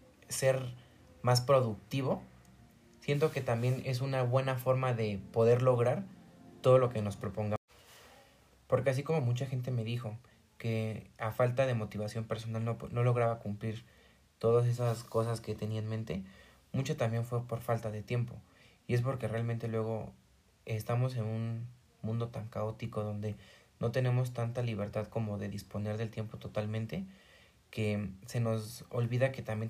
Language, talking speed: Spanish, 155 wpm